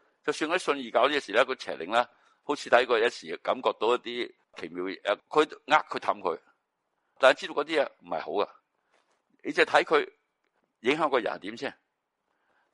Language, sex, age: Chinese, male, 60-79